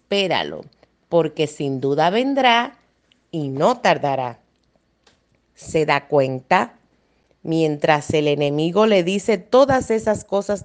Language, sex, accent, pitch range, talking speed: Spanish, female, American, 150-230 Hz, 105 wpm